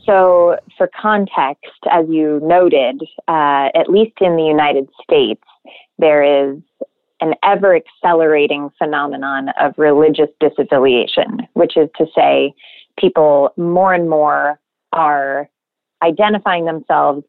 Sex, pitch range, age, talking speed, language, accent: female, 145-185 Hz, 20-39, 110 wpm, English, American